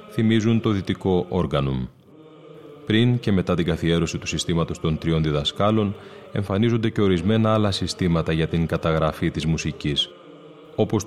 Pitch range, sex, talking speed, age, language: 85-115 Hz, male, 135 wpm, 30-49, Greek